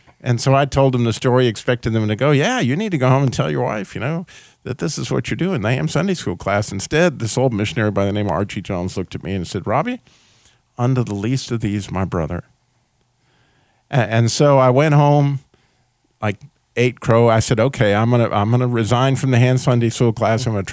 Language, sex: English, male